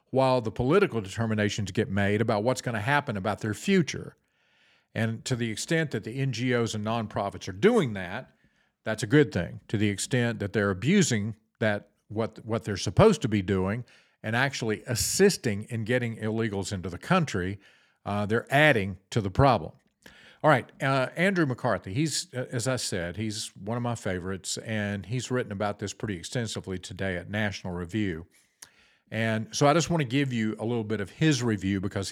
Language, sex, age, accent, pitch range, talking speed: English, male, 50-69, American, 100-125 Hz, 185 wpm